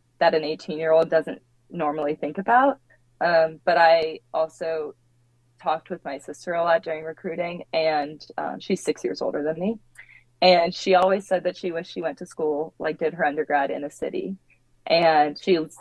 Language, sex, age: English, female, 20-39